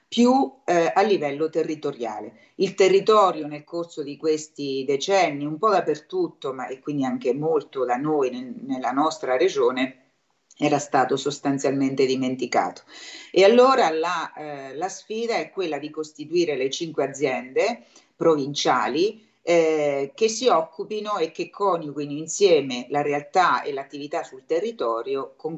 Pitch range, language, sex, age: 140-210 Hz, Italian, female, 40-59